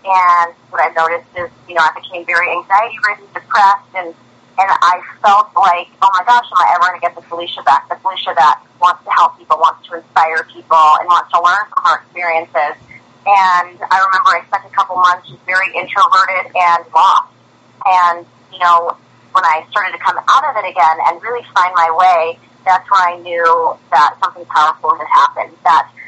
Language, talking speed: English, 200 wpm